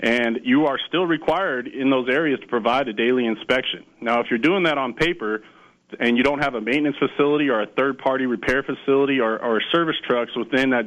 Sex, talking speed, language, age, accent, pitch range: male, 210 wpm, English, 30-49, American, 115-140 Hz